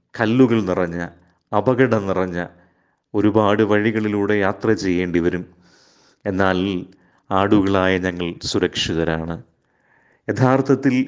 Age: 30-49